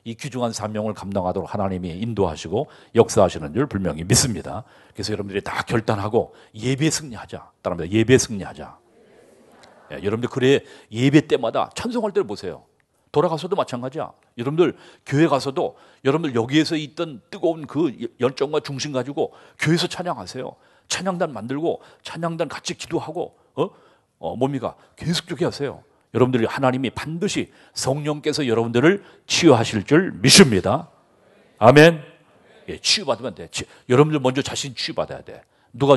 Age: 40-59